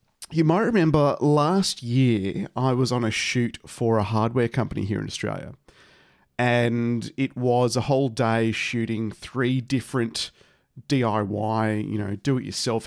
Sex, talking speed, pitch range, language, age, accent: male, 140 wpm, 110-135 Hz, English, 40-59, Australian